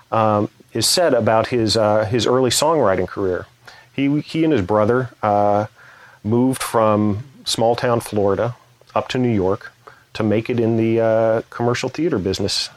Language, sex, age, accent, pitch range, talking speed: English, male, 40-59, American, 105-125 Hz, 155 wpm